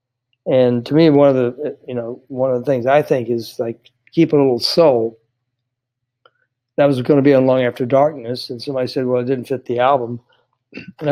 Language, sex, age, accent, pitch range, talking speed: English, male, 60-79, American, 125-150 Hz, 210 wpm